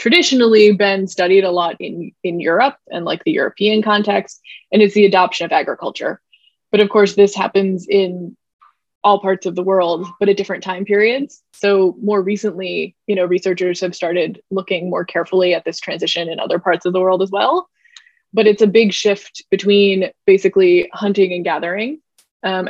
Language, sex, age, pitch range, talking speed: English, female, 20-39, 185-210 Hz, 180 wpm